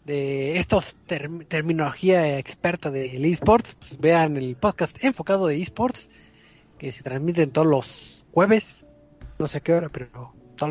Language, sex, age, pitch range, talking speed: Spanish, male, 30-49, 135-175 Hz, 155 wpm